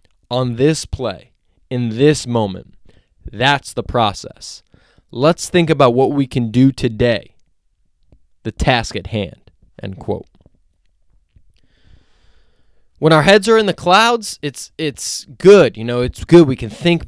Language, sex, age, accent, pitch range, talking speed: English, male, 20-39, American, 100-145 Hz, 140 wpm